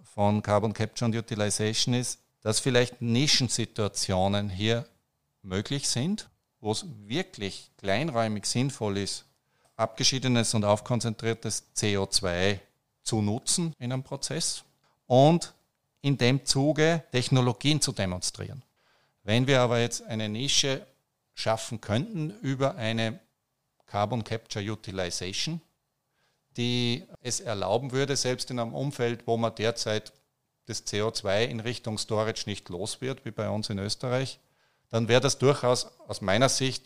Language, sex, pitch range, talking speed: German, male, 110-135 Hz, 125 wpm